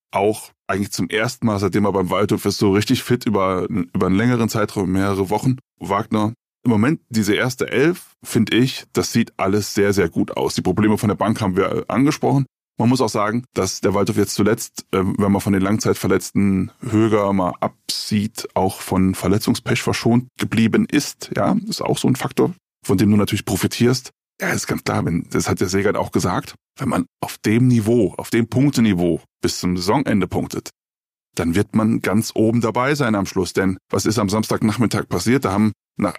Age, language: 20-39, German